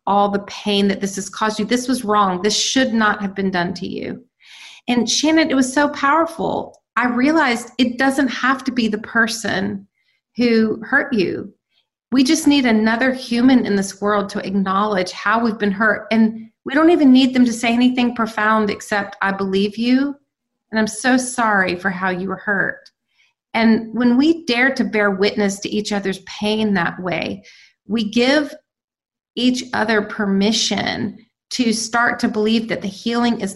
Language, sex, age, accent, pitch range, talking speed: English, female, 30-49, American, 205-245 Hz, 180 wpm